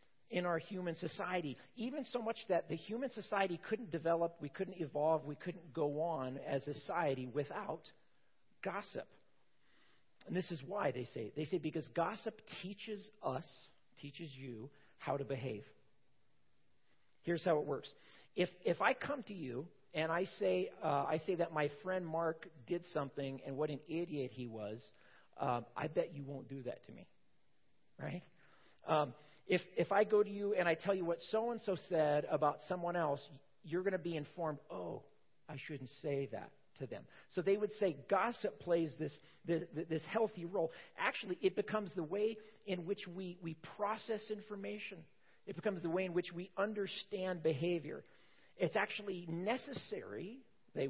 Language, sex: English, male